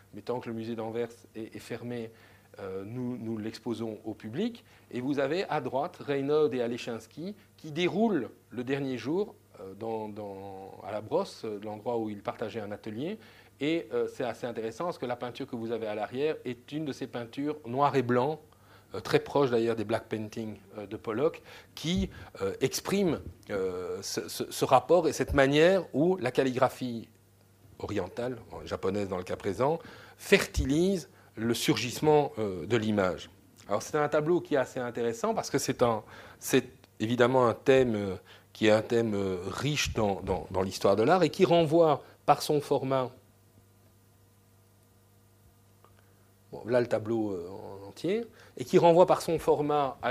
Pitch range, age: 105-140 Hz, 40-59